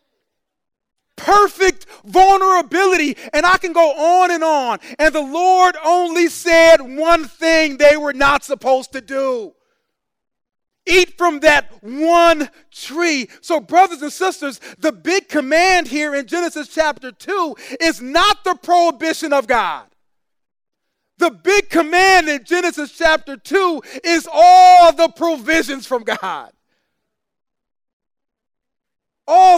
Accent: American